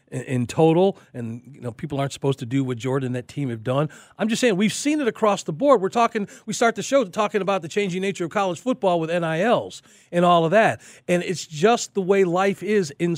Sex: male